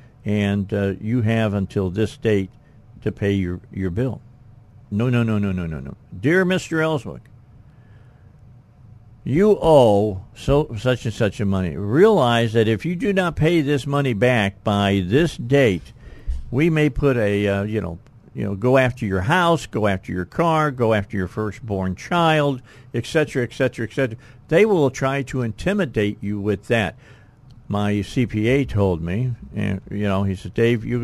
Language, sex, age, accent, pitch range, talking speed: English, male, 50-69, American, 100-130 Hz, 175 wpm